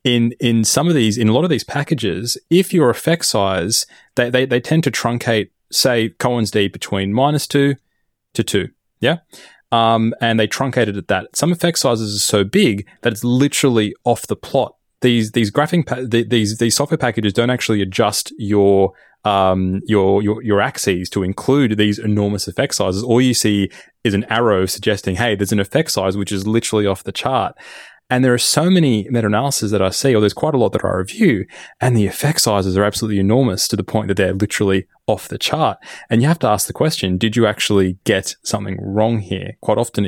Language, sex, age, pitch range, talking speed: English, male, 20-39, 100-120 Hz, 205 wpm